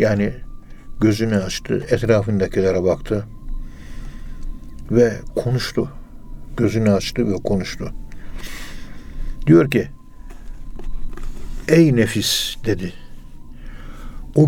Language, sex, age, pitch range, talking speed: Turkish, male, 60-79, 95-120 Hz, 70 wpm